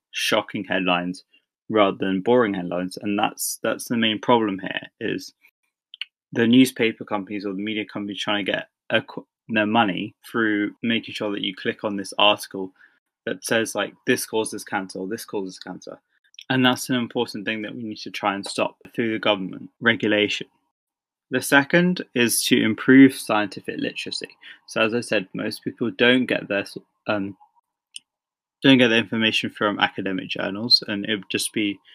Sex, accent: male, British